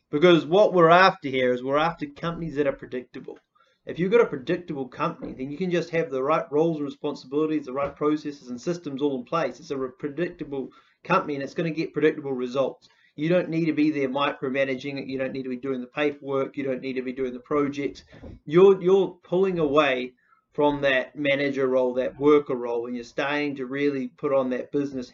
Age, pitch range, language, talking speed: 30-49, 135-165 Hz, English, 215 wpm